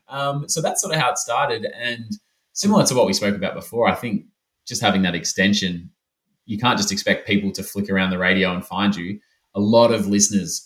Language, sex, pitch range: English, male, 95-105 Hz